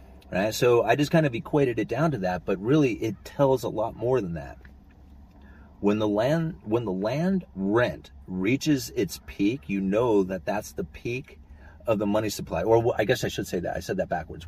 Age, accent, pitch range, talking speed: 30-49, American, 80-125 Hz, 210 wpm